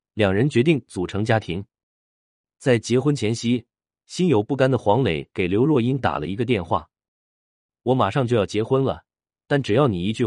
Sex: male